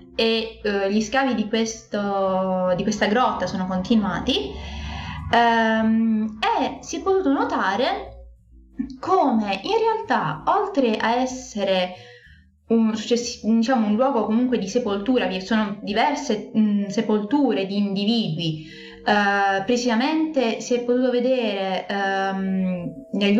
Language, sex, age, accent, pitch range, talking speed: Italian, female, 20-39, native, 200-255 Hz, 95 wpm